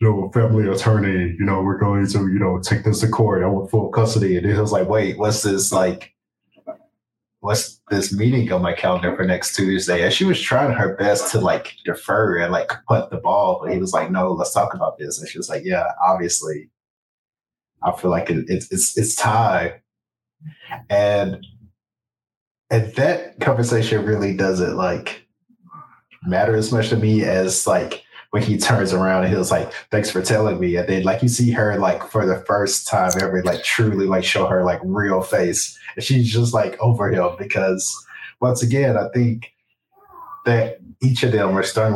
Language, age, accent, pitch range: English, 20-39, American, 95-115 Hz